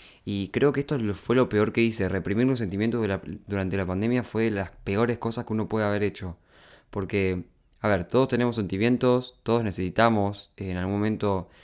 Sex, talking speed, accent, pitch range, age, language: male, 190 wpm, Argentinian, 90-115 Hz, 20-39, Spanish